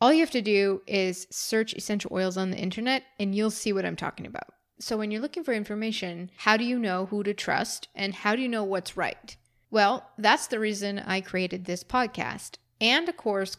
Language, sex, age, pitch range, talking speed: English, female, 20-39, 190-225 Hz, 220 wpm